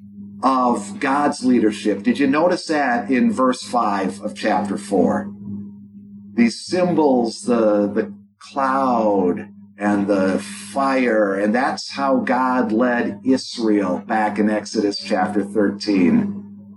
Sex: male